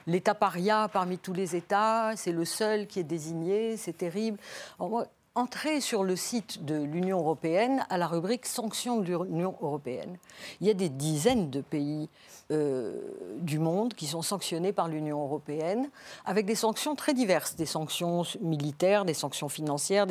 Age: 50-69